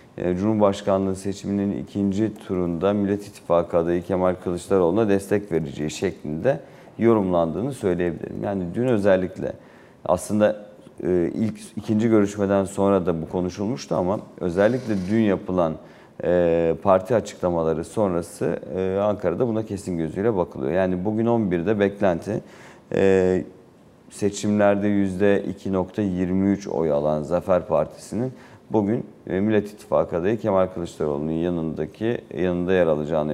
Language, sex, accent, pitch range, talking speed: Turkish, male, native, 85-100 Hz, 100 wpm